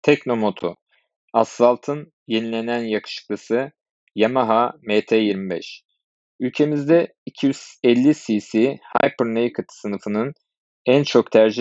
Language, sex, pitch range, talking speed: Turkish, male, 105-125 Hz, 65 wpm